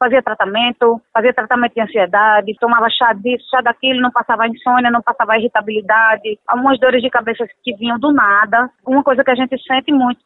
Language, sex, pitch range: Portuguese, female, 220-275 Hz